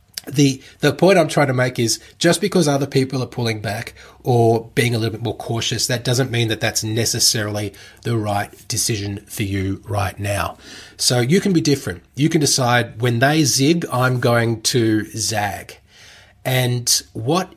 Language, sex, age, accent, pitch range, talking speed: English, male, 30-49, Australian, 105-130 Hz, 180 wpm